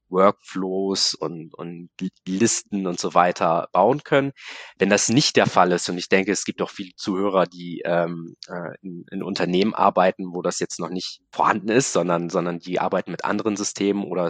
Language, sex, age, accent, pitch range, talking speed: German, male, 20-39, German, 90-105 Hz, 185 wpm